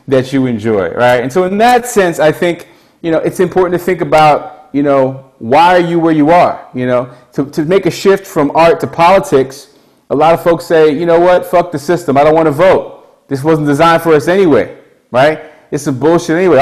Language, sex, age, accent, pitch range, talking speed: English, male, 30-49, American, 135-175 Hz, 230 wpm